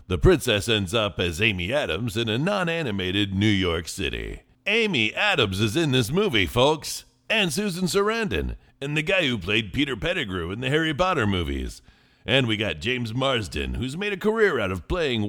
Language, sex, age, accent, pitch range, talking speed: English, male, 50-69, American, 85-140 Hz, 185 wpm